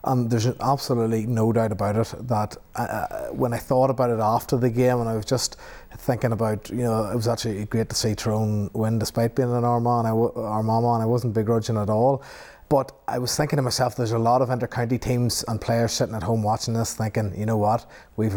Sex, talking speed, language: male, 220 wpm, English